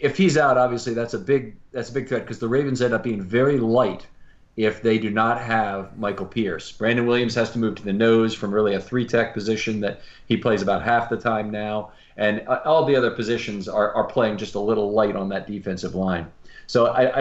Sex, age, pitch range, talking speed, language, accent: male, 40-59, 105-125 Hz, 225 wpm, English, American